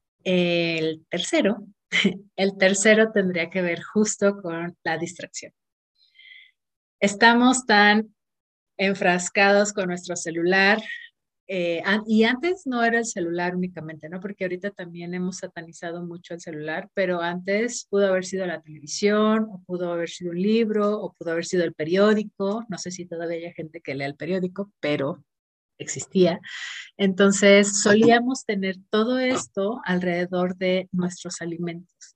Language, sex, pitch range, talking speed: Spanish, female, 175-205 Hz, 140 wpm